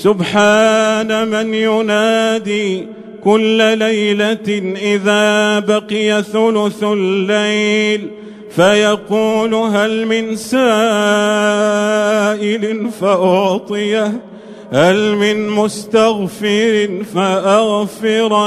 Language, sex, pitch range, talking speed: Arabic, male, 205-220 Hz, 60 wpm